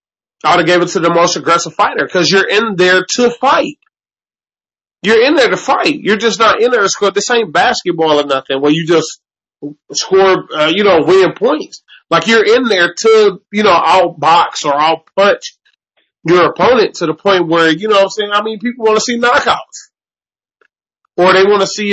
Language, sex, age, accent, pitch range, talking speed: English, male, 30-49, American, 155-220 Hz, 205 wpm